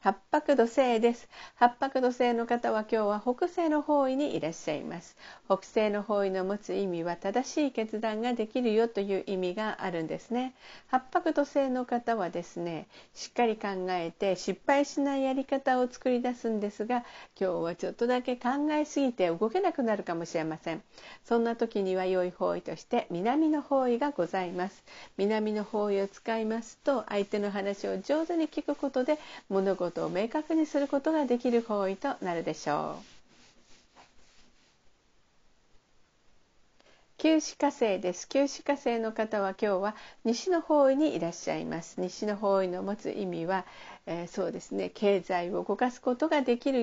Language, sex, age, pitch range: Japanese, female, 50-69, 195-270 Hz